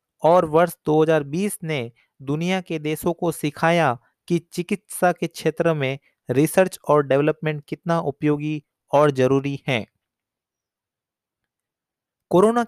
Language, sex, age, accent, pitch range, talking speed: Hindi, male, 30-49, native, 140-170 Hz, 110 wpm